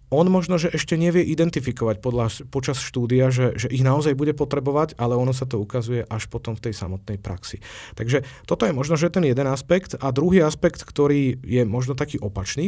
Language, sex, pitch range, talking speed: Slovak, male, 110-135 Hz, 200 wpm